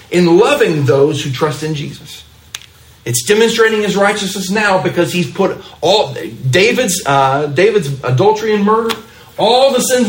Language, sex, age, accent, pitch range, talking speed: English, male, 40-59, American, 120-190 Hz, 150 wpm